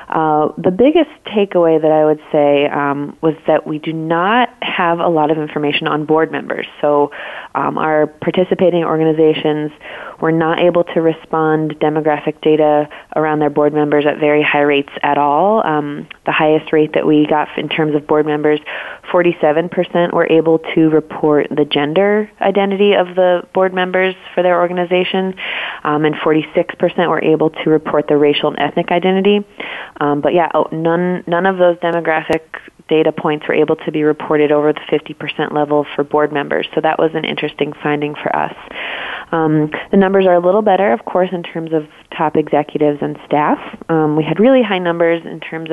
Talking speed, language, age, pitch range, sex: 180 wpm, English, 20-39, 150-170 Hz, female